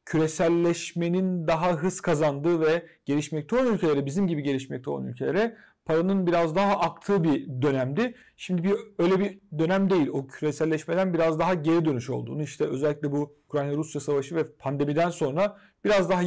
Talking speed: 155 wpm